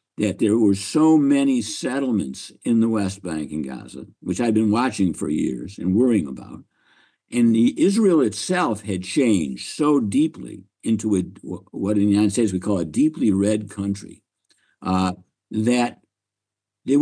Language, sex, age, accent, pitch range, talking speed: English, male, 60-79, American, 105-175 Hz, 160 wpm